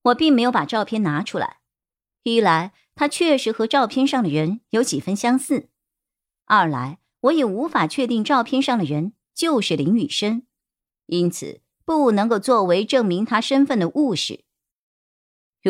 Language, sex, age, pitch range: Chinese, male, 50-69, 190-275 Hz